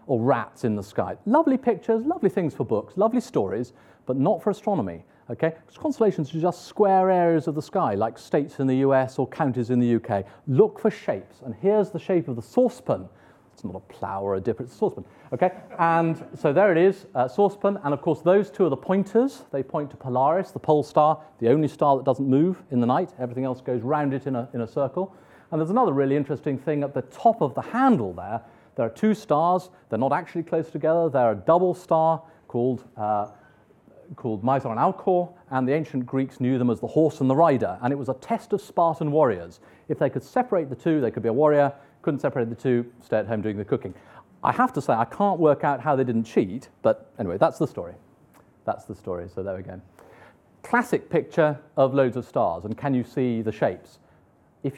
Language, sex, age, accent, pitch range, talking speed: English, male, 40-59, British, 125-180 Hz, 230 wpm